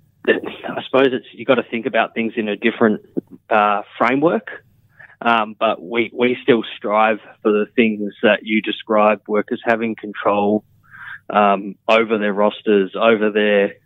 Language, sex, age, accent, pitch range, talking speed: English, male, 20-39, Australian, 105-110 Hz, 150 wpm